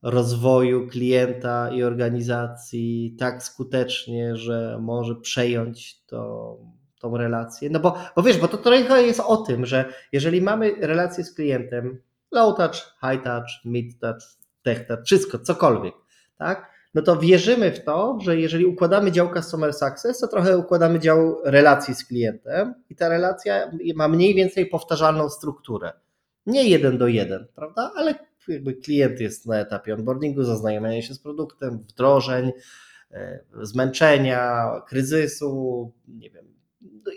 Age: 20-39